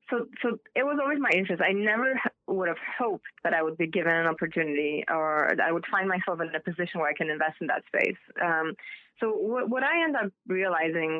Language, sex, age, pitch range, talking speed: English, female, 20-39, 165-200 Hz, 230 wpm